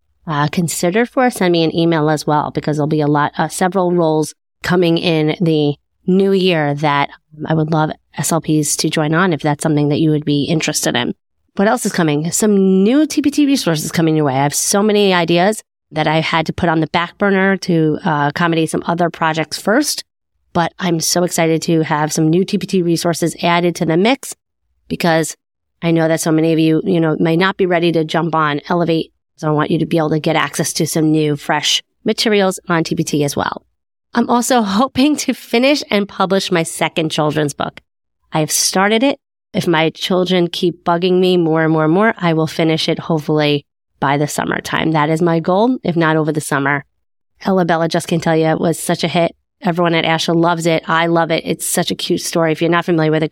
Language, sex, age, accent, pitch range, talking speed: English, female, 30-49, American, 155-185 Hz, 220 wpm